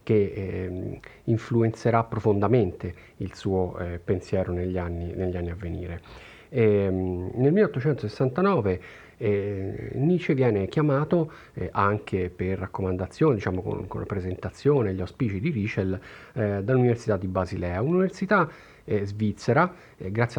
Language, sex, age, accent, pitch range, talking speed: Italian, male, 40-59, native, 95-120 Hz, 130 wpm